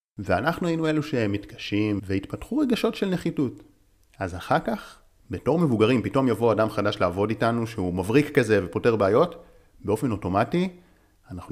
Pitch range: 95-145 Hz